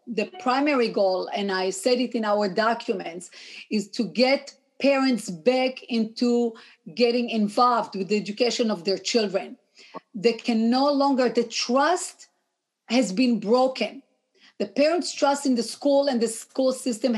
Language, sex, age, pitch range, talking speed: English, female, 40-59, 210-265 Hz, 150 wpm